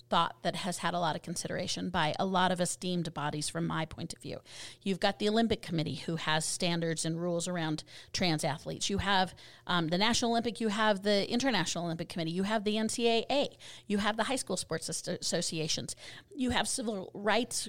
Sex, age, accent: female, 40-59, American